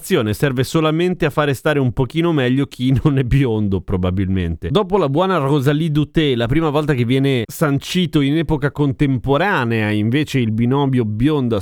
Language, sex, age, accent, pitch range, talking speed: Italian, male, 30-49, native, 115-150 Hz, 160 wpm